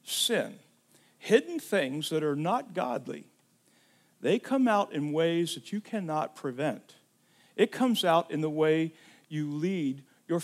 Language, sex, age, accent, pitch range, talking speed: English, male, 50-69, American, 150-200 Hz, 145 wpm